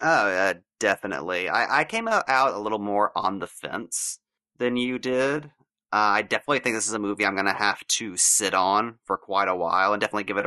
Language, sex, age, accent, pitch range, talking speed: English, male, 30-49, American, 100-120 Hz, 230 wpm